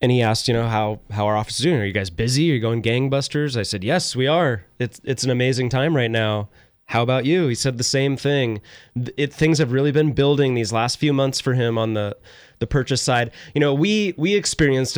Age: 20-39